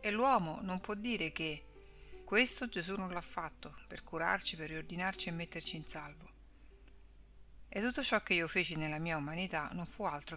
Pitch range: 160-205 Hz